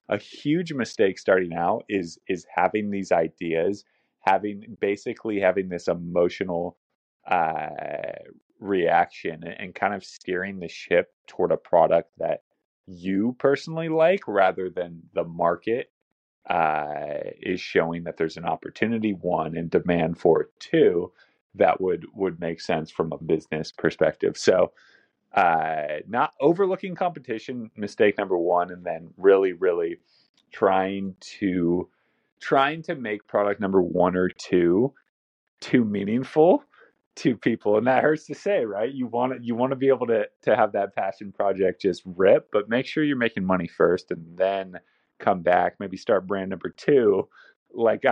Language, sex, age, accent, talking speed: English, male, 30-49, American, 150 wpm